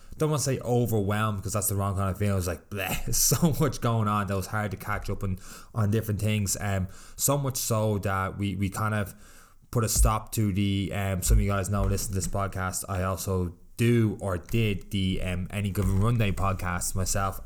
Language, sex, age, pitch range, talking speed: English, male, 20-39, 95-110 Hz, 235 wpm